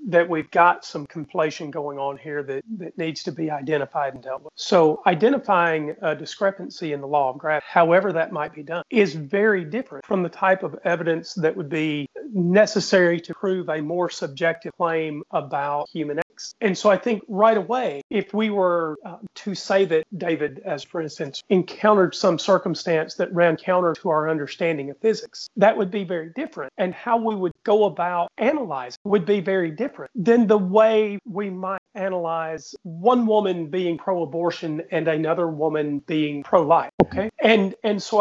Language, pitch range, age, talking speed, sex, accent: English, 165-210 Hz, 40-59, 180 wpm, male, American